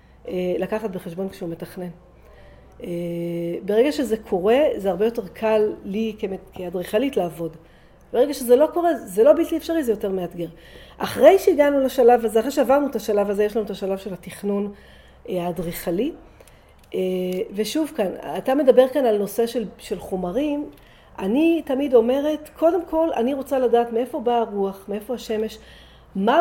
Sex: female